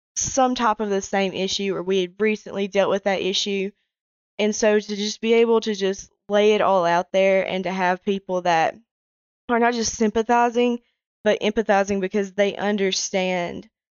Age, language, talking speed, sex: 20-39, English, 175 wpm, female